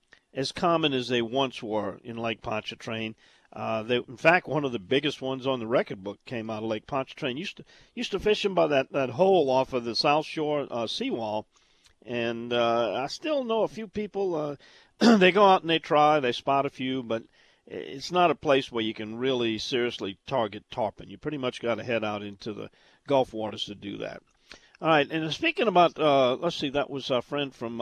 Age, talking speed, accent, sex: 50-69, 220 wpm, American, male